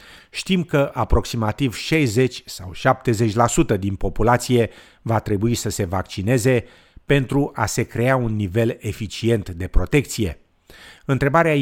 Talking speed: 120 wpm